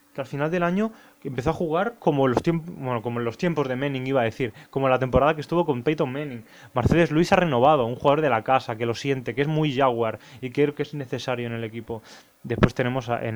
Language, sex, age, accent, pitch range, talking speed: Spanish, male, 20-39, Spanish, 120-155 Hz, 240 wpm